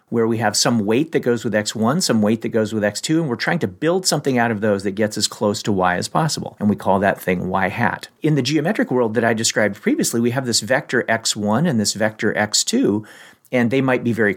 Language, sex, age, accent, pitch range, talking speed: English, male, 50-69, American, 105-145 Hz, 255 wpm